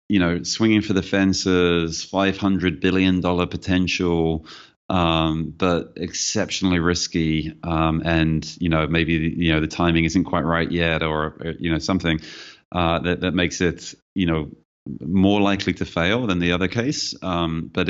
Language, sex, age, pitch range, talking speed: English, male, 30-49, 80-90 Hz, 160 wpm